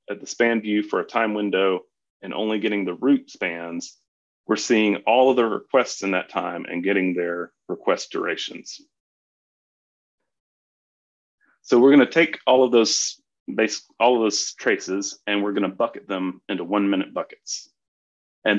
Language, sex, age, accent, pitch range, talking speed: English, male, 30-49, American, 95-150 Hz, 160 wpm